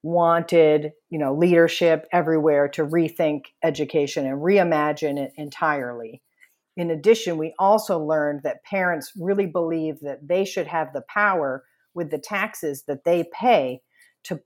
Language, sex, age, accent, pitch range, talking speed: English, female, 50-69, American, 150-185 Hz, 140 wpm